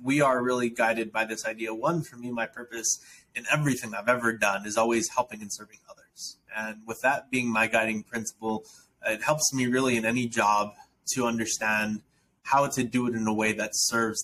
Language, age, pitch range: English, 20-39, 110-125 Hz